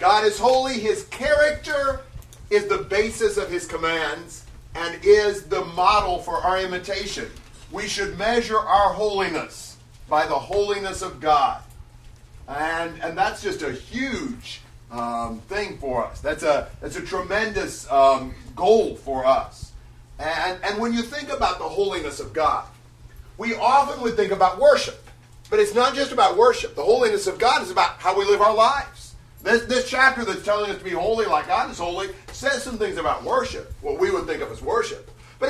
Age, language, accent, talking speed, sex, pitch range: 40-59, English, American, 175 wpm, male, 170-255 Hz